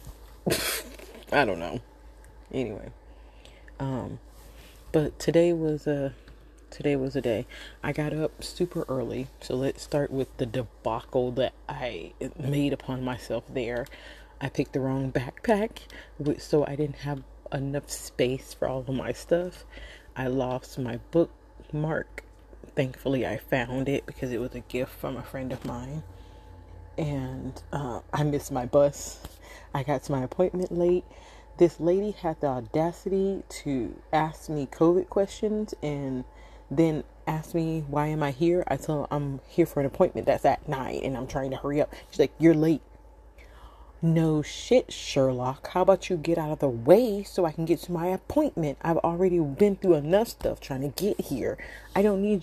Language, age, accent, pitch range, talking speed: English, 30-49, American, 130-170 Hz, 165 wpm